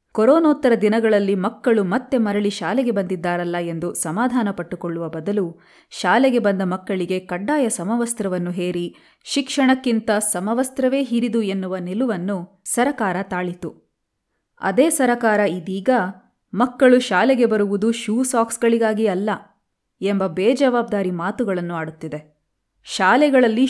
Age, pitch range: 20-39, 185-245 Hz